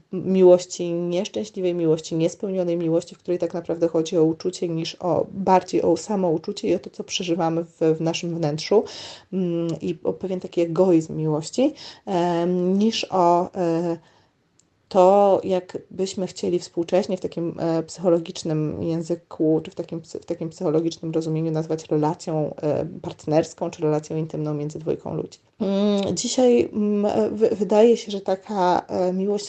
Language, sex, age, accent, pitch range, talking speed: Polish, female, 30-49, native, 165-205 Hz, 140 wpm